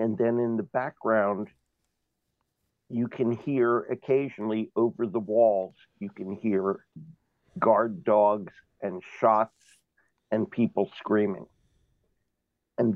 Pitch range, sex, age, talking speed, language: 110-125 Hz, male, 50-69, 105 wpm, English